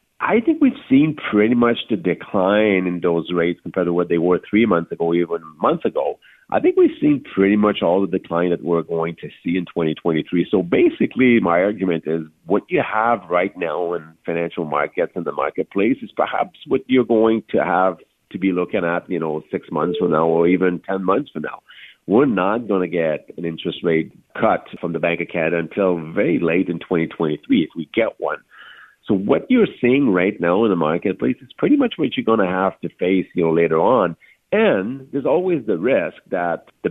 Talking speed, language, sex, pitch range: 210 wpm, English, male, 85-105 Hz